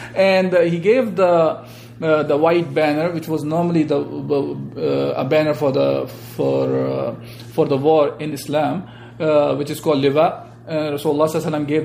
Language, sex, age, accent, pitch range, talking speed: English, male, 40-59, Indian, 140-170 Hz, 170 wpm